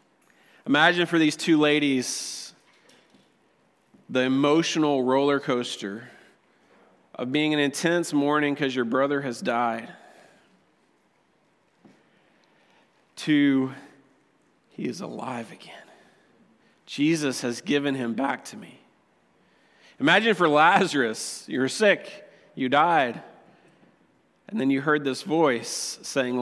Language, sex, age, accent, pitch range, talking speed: English, male, 40-59, American, 130-165 Hz, 105 wpm